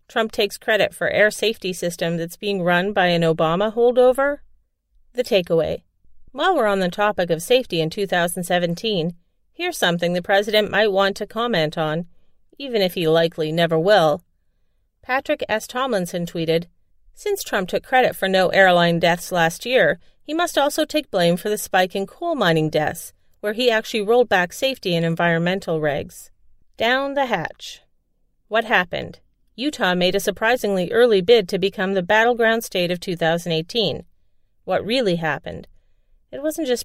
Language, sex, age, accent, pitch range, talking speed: English, female, 40-59, American, 175-230 Hz, 160 wpm